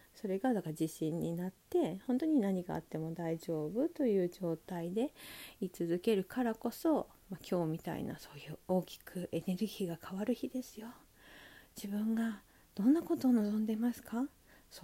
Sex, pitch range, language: female, 180-255 Hz, Japanese